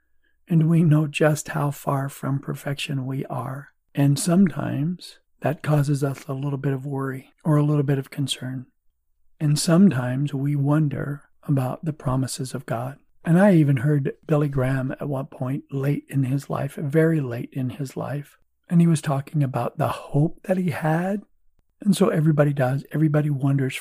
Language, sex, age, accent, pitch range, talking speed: English, male, 50-69, American, 140-160 Hz, 175 wpm